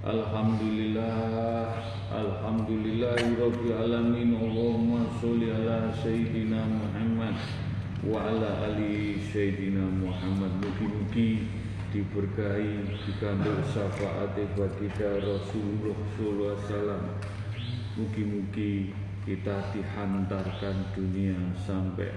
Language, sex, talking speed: Indonesian, male, 75 wpm